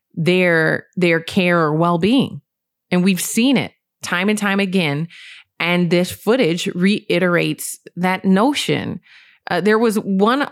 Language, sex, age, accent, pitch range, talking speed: English, female, 20-39, American, 155-190 Hz, 135 wpm